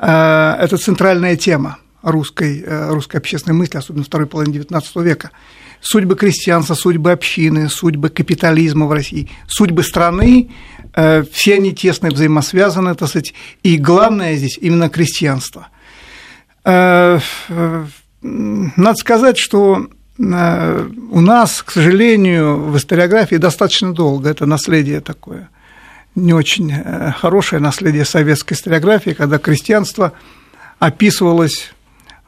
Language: Russian